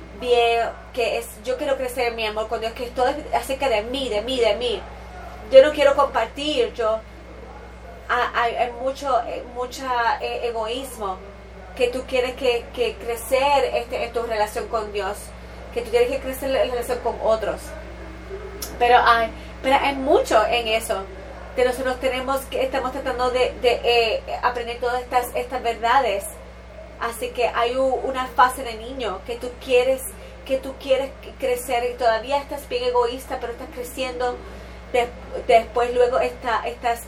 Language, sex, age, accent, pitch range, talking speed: English, female, 30-49, American, 230-265 Hz, 160 wpm